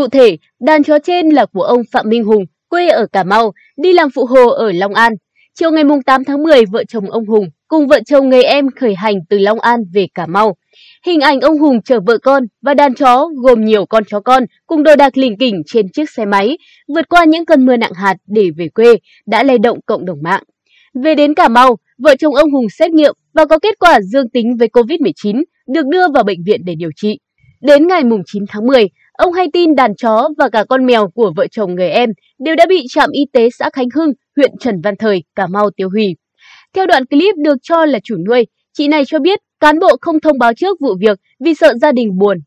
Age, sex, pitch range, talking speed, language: 20-39, female, 215-305 Hz, 245 wpm, Vietnamese